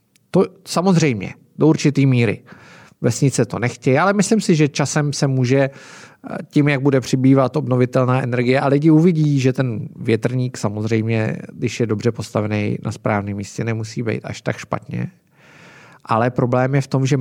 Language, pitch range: Czech, 120-150 Hz